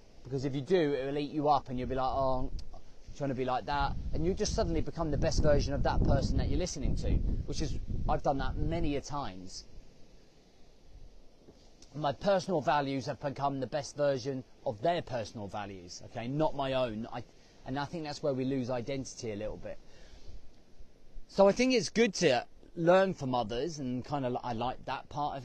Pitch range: 120-150 Hz